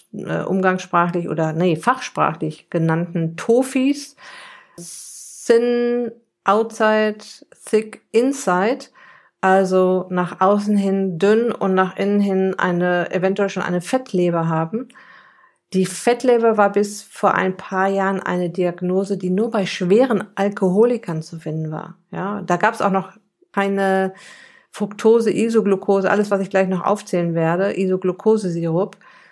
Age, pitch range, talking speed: 50-69, 185-215 Hz, 125 wpm